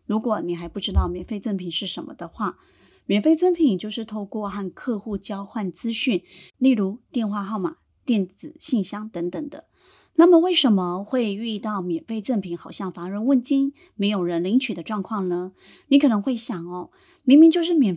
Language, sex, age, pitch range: Chinese, female, 30-49, 185-255 Hz